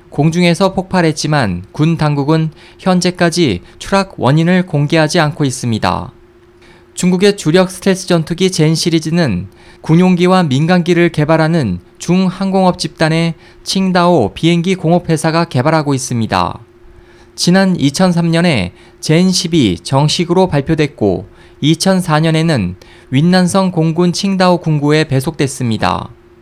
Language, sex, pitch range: Korean, male, 130-180 Hz